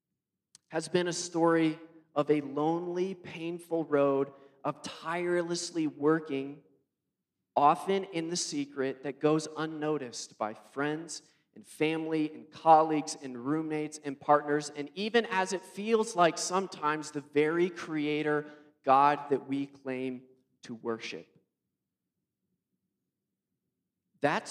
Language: English